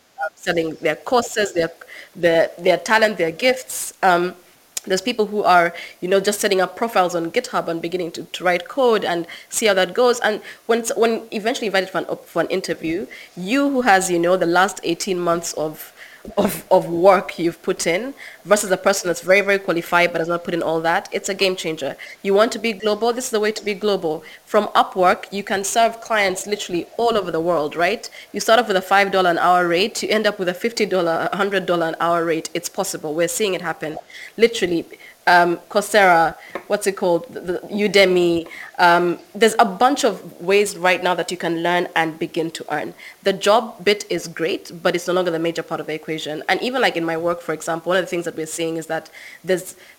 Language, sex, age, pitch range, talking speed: English, female, 20-39, 170-210 Hz, 220 wpm